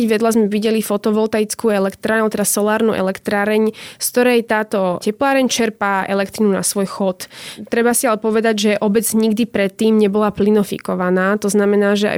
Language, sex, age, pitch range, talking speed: Slovak, female, 20-39, 200-220 Hz, 155 wpm